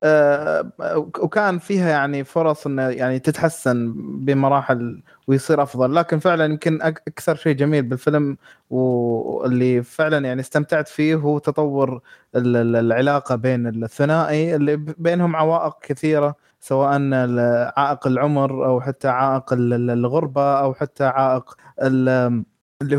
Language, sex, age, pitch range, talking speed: Arabic, male, 20-39, 130-165 Hz, 115 wpm